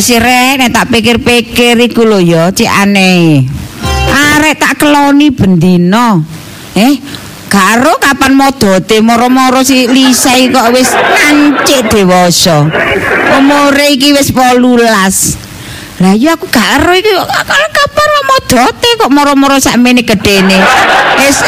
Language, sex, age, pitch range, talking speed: Indonesian, female, 40-59, 170-250 Hz, 125 wpm